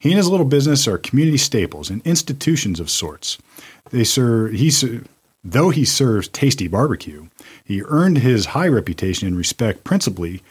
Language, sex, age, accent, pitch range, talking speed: English, male, 40-59, American, 95-135 Hz, 165 wpm